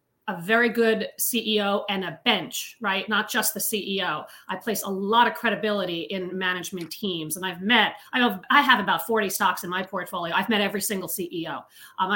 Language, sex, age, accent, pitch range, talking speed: English, female, 40-59, American, 185-220 Hz, 190 wpm